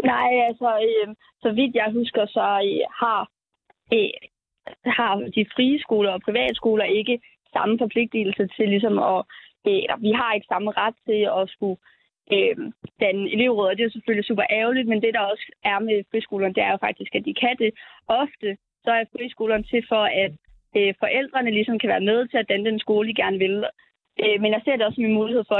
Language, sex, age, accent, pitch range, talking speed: Danish, female, 20-39, native, 200-235 Hz, 200 wpm